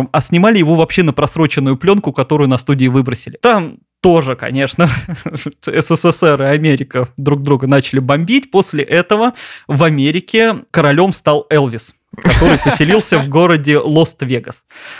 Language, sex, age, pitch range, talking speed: Russian, male, 20-39, 135-180 Hz, 130 wpm